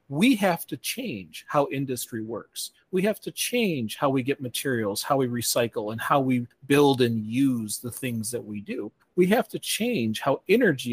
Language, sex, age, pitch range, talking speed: English, male, 40-59, 115-145 Hz, 190 wpm